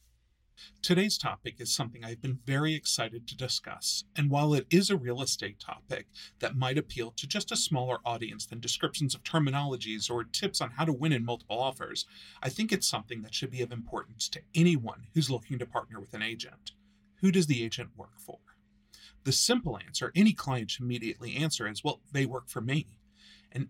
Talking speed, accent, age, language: 200 wpm, American, 40-59, English